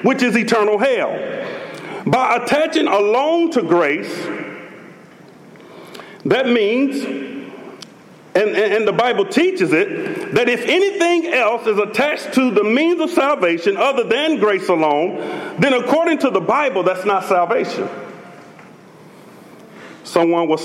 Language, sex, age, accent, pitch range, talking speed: English, male, 40-59, American, 195-320 Hz, 120 wpm